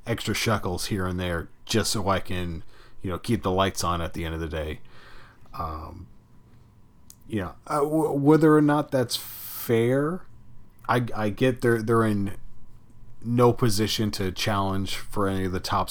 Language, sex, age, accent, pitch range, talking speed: English, male, 30-49, American, 95-115 Hz, 175 wpm